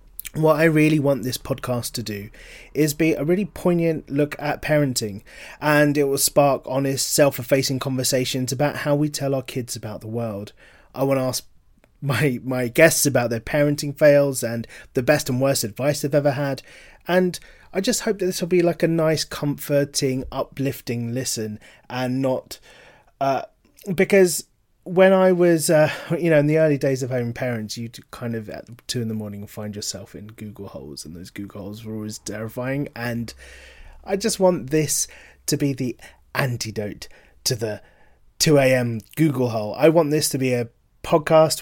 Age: 30-49